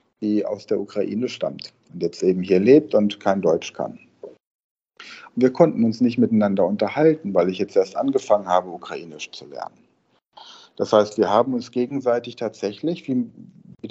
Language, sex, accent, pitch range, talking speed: German, male, German, 105-145 Hz, 165 wpm